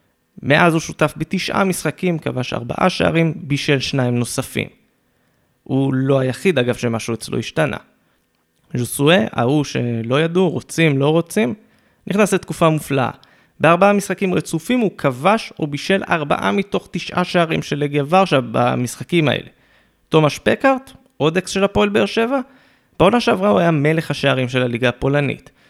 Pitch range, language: 130-190 Hz, Hebrew